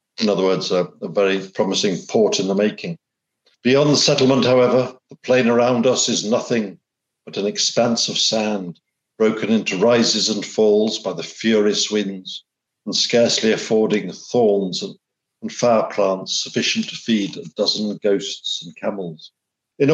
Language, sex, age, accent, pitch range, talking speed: English, male, 60-79, British, 105-125 Hz, 155 wpm